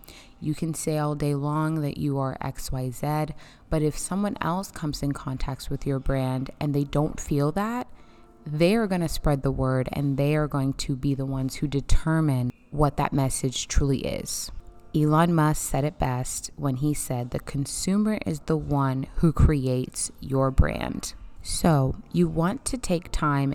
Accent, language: American, English